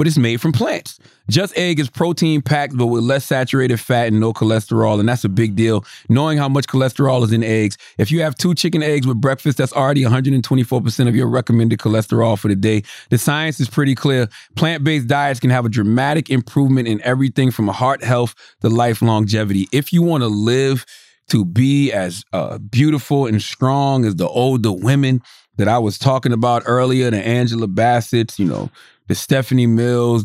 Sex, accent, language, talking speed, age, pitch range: male, American, English, 195 wpm, 30-49, 115-150 Hz